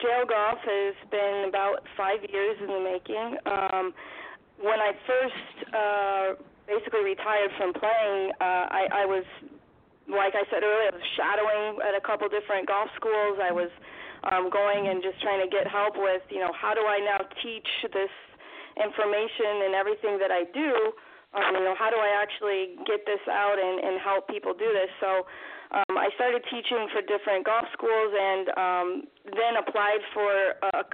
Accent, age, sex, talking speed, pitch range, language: American, 30-49, female, 180 wpm, 195-220 Hz, English